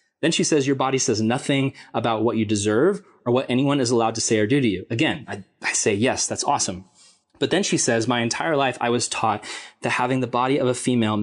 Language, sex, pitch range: English, male, 115-140 Hz